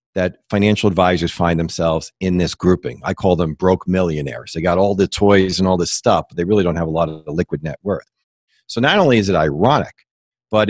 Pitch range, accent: 90-110 Hz, American